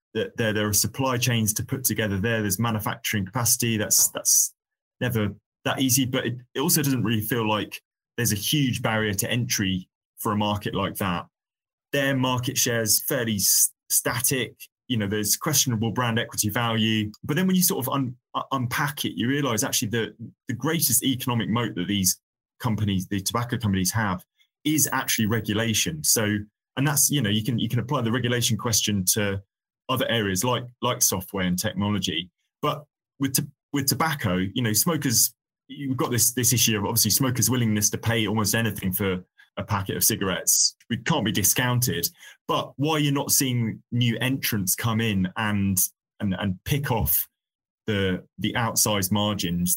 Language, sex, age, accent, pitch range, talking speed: English, male, 20-39, British, 100-125 Hz, 175 wpm